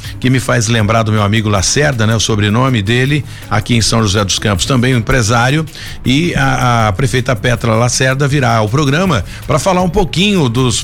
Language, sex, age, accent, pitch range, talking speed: Portuguese, male, 50-69, Brazilian, 115-150 Hz, 200 wpm